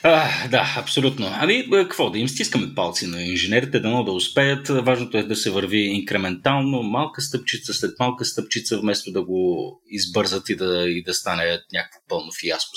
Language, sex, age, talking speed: Bulgarian, male, 30-49, 175 wpm